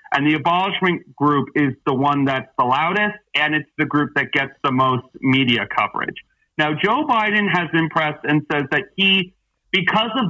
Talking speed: 185 wpm